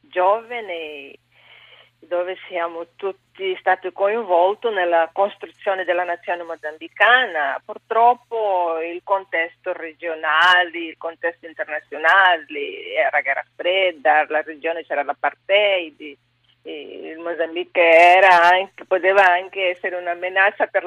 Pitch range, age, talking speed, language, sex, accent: 170-215 Hz, 40-59, 95 wpm, Italian, female, native